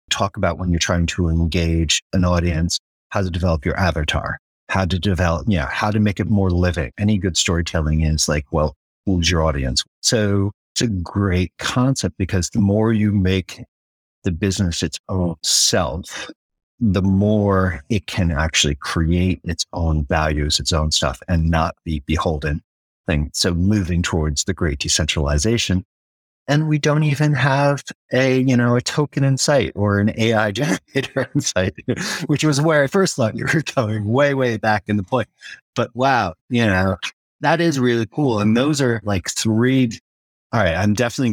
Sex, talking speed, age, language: male, 180 wpm, 50-69, English